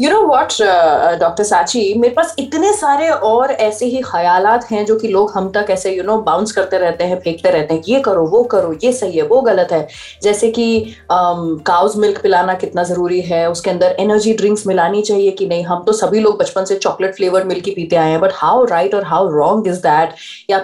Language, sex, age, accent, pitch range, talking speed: Hindi, female, 30-49, native, 195-285 Hz, 225 wpm